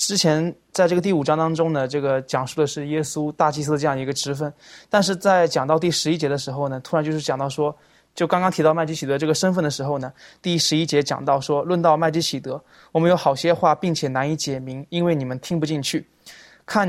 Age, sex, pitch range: 20-39, male, 145-170 Hz